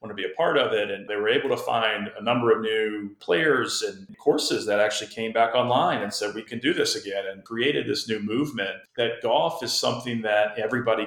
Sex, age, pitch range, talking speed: male, 40-59, 105-145 Hz, 235 wpm